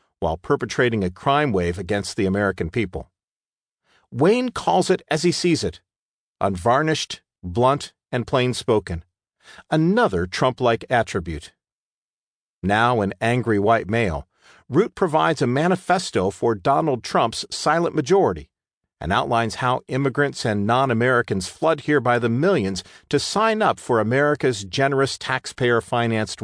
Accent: American